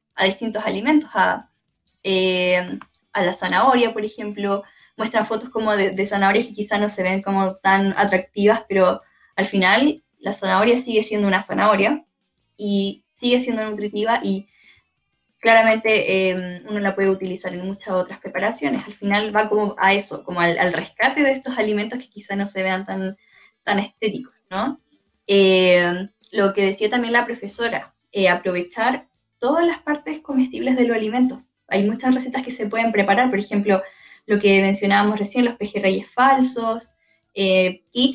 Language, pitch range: Romanian, 195-235 Hz